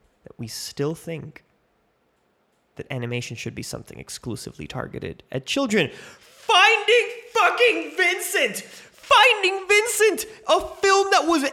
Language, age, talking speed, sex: English, 20-39, 110 wpm, male